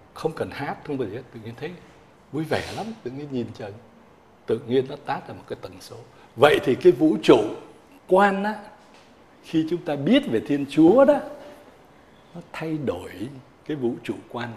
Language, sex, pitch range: Vietnamese, male, 115-170 Hz